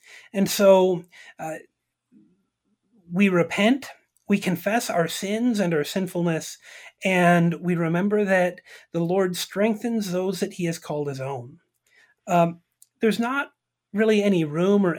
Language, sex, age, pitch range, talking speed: English, male, 30-49, 170-220 Hz, 130 wpm